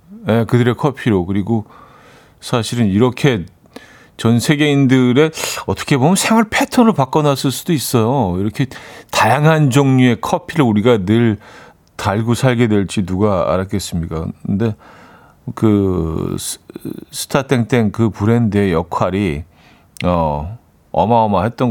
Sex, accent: male, native